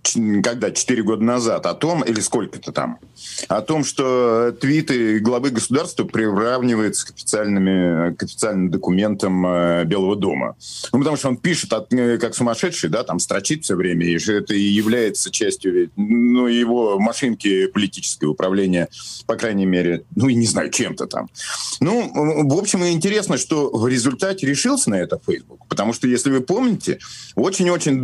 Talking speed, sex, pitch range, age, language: 155 wpm, male, 105-160 Hz, 40-59, Russian